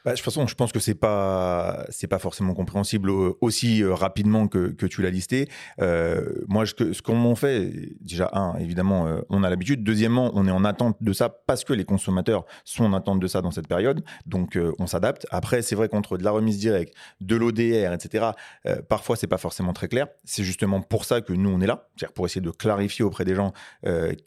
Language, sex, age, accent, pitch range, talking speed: French, male, 30-49, French, 95-115 Hz, 225 wpm